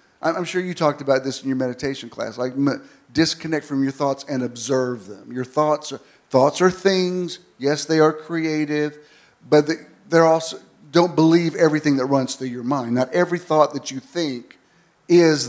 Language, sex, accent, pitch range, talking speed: English, male, American, 135-170 Hz, 175 wpm